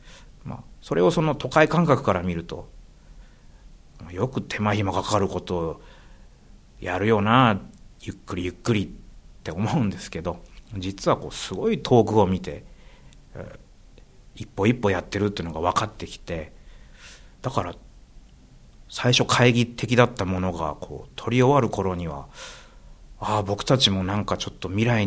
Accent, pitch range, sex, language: native, 90-125 Hz, male, Japanese